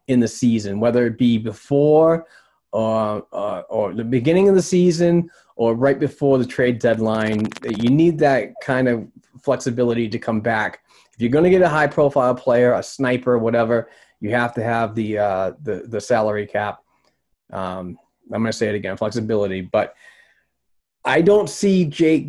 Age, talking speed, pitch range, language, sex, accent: 30-49, 170 wpm, 115-150 Hz, English, male, American